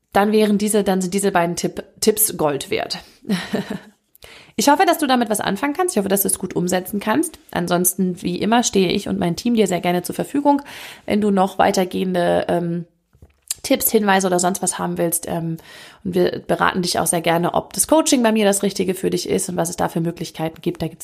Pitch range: 185-225 Hz